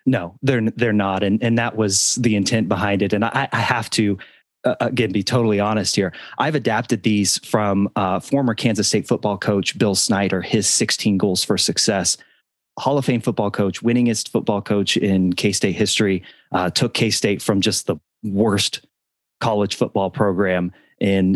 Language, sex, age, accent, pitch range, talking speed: English, male, 30-49, American, 100-115 Hz, 180 wpm